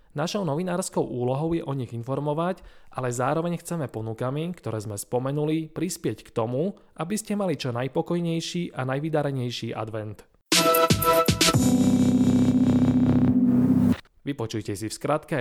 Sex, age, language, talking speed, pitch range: male, 20-39, Slovak, 115 wpm, 120-155 Hz